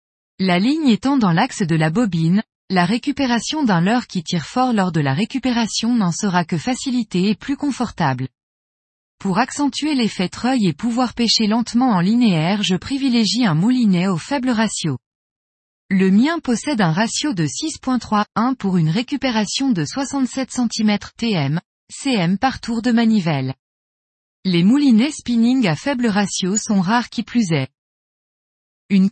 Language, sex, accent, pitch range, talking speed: French, female, French, 180-245 Hz, 150 wpm